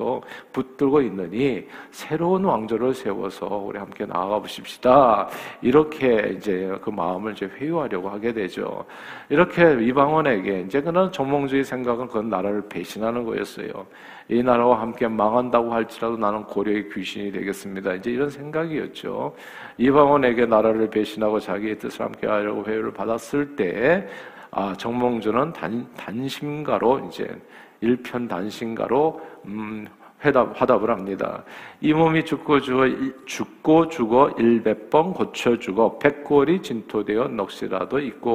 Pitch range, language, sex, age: 105-135 Hz, Korean, male, 50-69